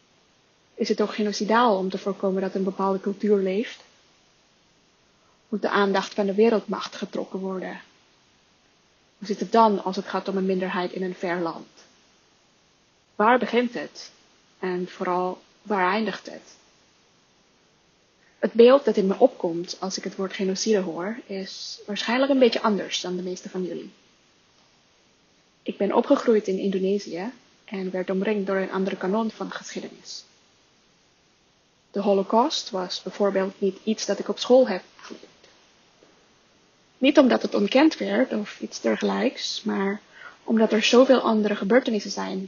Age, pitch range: 20-39, 195-225 Hz